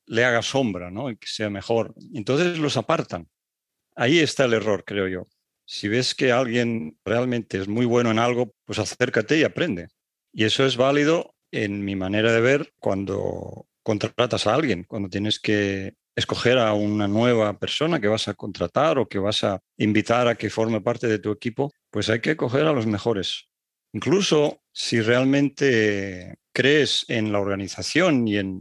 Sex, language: male, Spanish